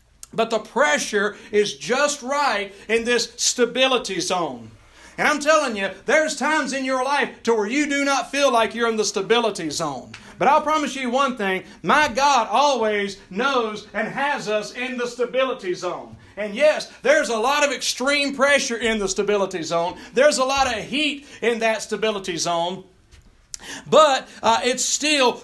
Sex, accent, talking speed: male, American, 170 wpm